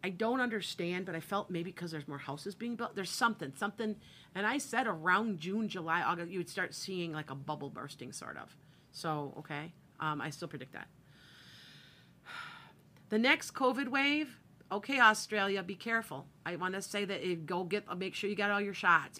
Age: 40-59